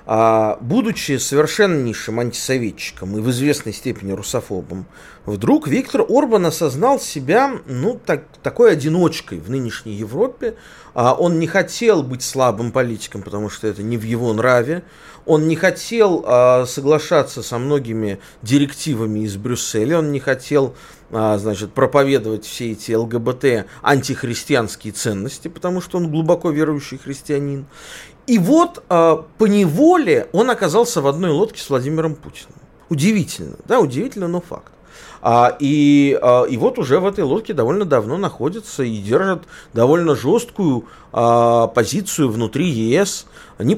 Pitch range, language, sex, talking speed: 115-165 Hz, Russian, male, 130 wpm